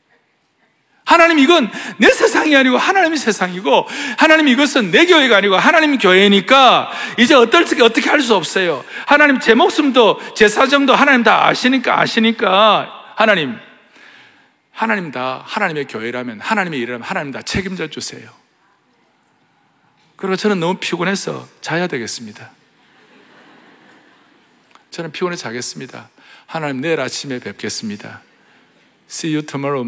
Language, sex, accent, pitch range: Korean, male, native, 190-305 Hz